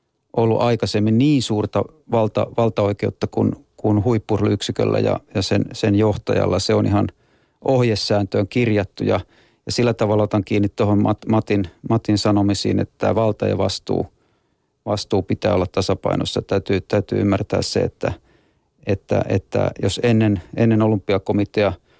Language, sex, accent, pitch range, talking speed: Finnish, male, native, 100-115 Hz, 135 wpm